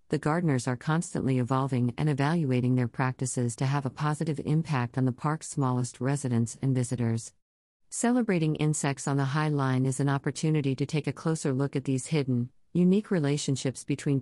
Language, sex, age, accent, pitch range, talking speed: English, female, 50-69, American, 130-165 Hz, 175 wpm